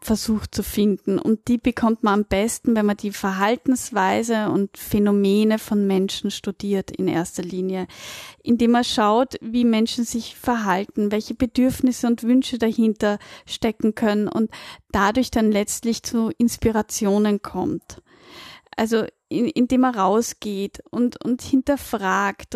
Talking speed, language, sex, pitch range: 135 wpm, German, female, 215-270 Hz